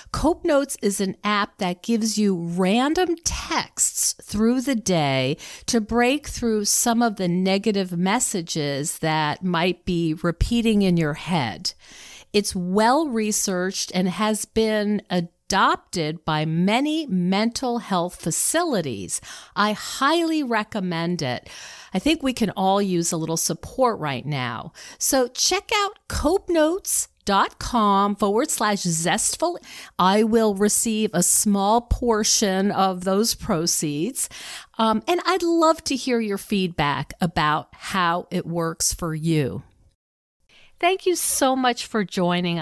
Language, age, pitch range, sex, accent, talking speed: English, 50-69, 170-235 Hz, female, American, 130 wpm